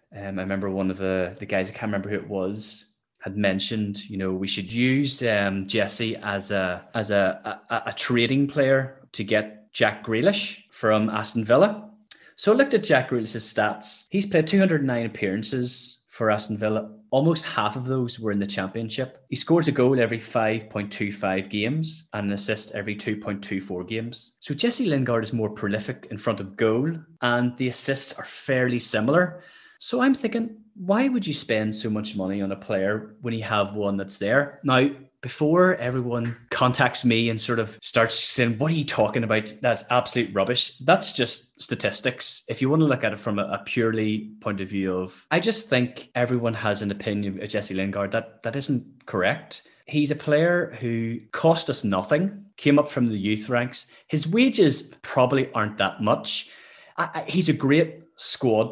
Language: English